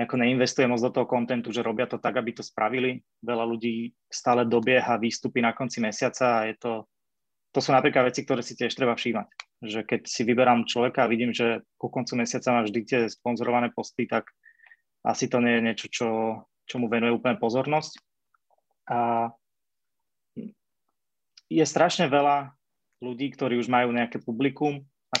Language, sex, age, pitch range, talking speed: Slovak, male, 20-39, 115-130 Hz, 170 wpm